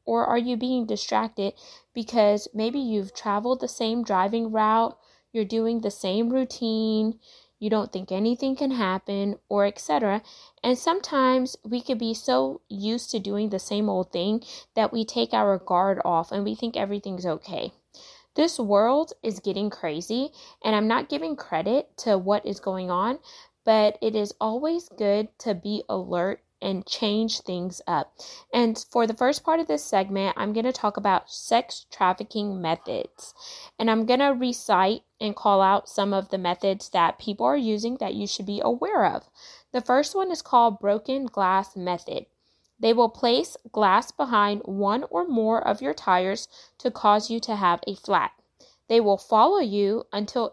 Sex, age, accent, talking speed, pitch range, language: female, 20-39, American, 170 wpm, 200-245 Hz, English